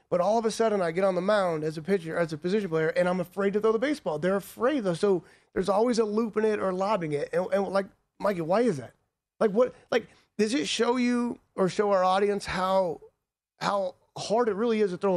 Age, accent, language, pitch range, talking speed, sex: 30-49, American, English, 145-195 Hz, 250 wpm, male